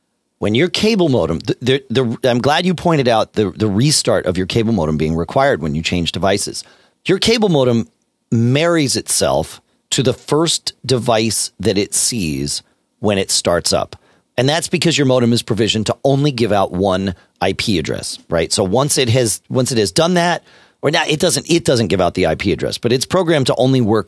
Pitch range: 90-135 Hz